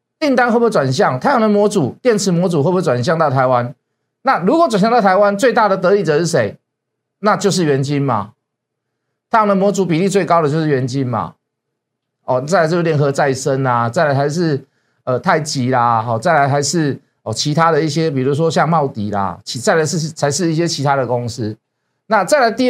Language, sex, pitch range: Chinese, male, 135-205 Hz